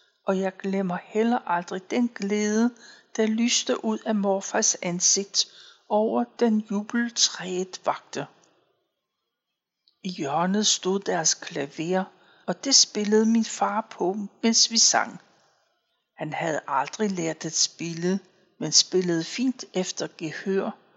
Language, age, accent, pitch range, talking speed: Danish, 60-79, native, 185-230 Hz, 120 wpm